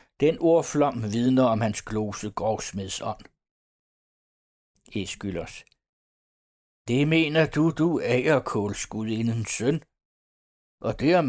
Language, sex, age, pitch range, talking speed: Danish, male, 60-79, 105-150 Hz, 90 wpm